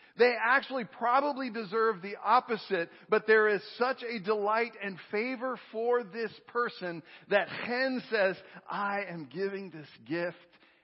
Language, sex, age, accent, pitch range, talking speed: English, male, 50-69, American, 160-220 Hz, 140 wpm